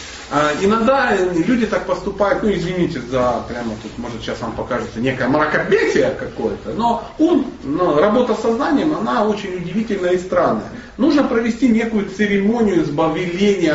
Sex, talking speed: male, 140 wpm